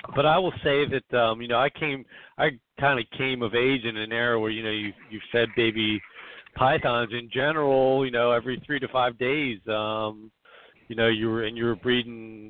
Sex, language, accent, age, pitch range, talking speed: male, English, American, 50-69, 110-130 Hz, 215 wpm